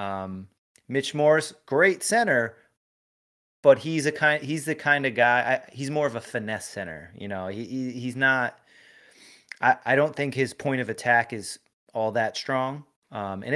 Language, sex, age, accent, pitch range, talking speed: English, male, 30-49, American, 105-135 Hz, 175 wpm